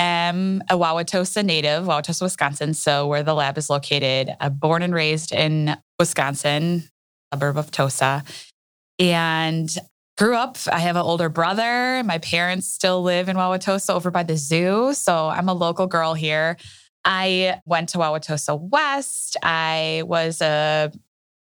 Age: 20-39